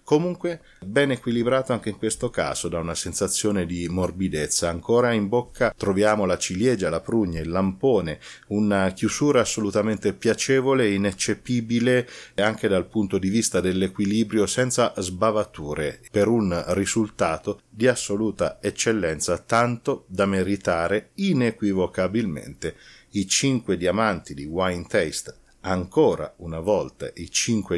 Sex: male